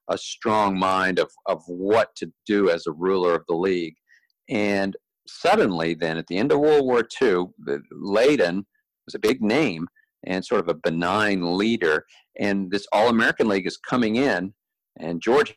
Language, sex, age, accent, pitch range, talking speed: English, male, 50-69, American, 90-110 Hz, 170 wpm